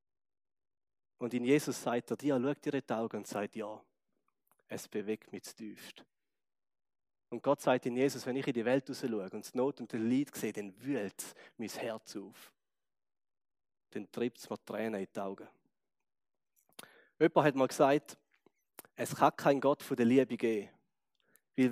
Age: 30-49